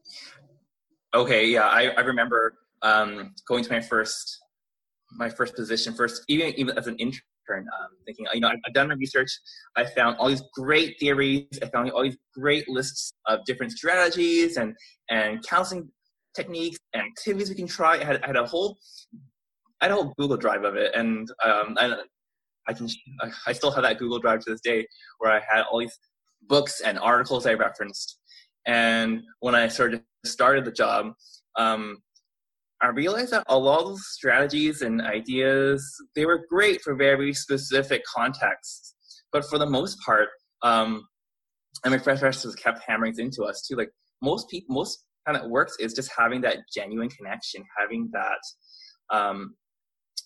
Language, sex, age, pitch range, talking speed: English, male, 20-39, 115-150 Hz, 170 wpm